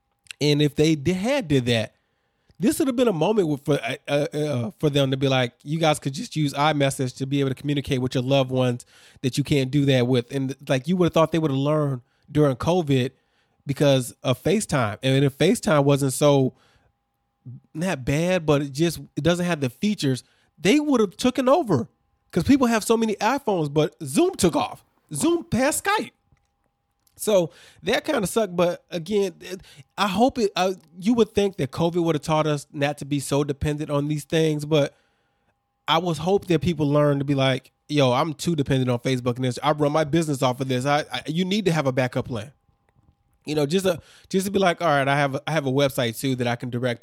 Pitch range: 135-185 Hz